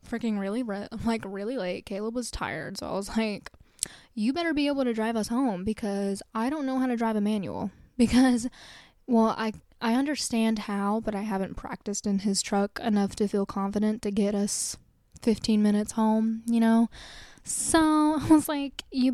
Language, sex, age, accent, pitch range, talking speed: English, female, 10-29, American, 205-245 Hz, 185 wpm